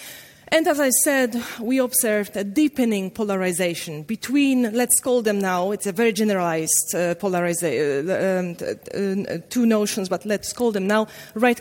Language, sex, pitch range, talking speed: German, female, 195-250 Hz, 155 wpm